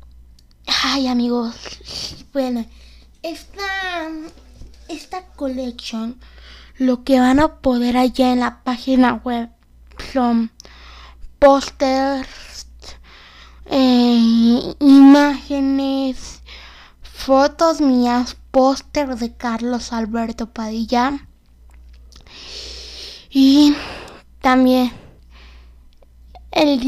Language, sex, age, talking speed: English, female, 20-39, 65 wpm